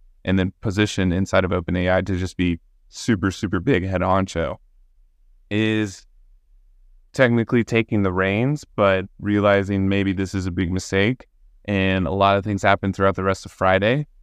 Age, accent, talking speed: 20-39, American, 160 wpm